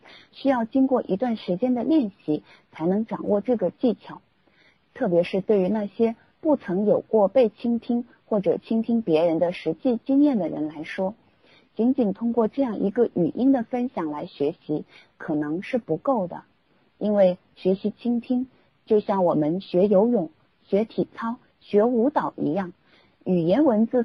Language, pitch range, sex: Chinese, 185-245 Hz, female